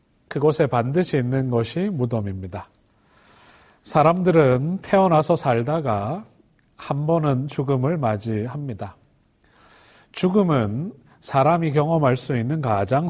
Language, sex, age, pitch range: Korean, male, 40-59, 120-165 Hz